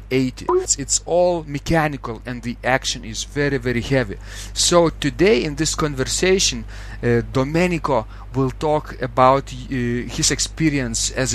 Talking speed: 130 wpm